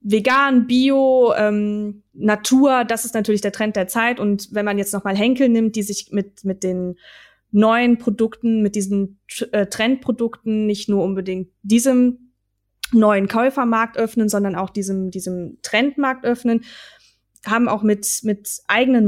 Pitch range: 195-235 Hz